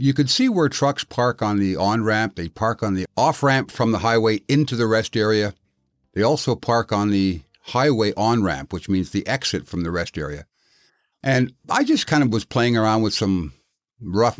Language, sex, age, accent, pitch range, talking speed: English, male, 60-79, American, 95-130 Hz, 195 wpm